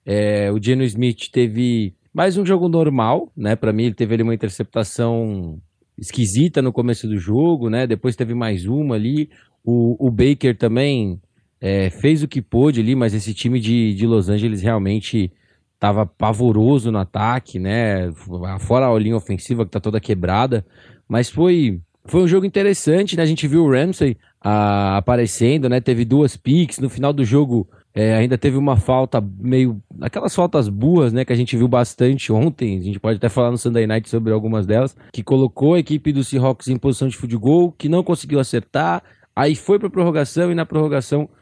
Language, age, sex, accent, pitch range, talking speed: Portuguese, 20-39, male, Brazilian, 110-140 Hz, 190 wpm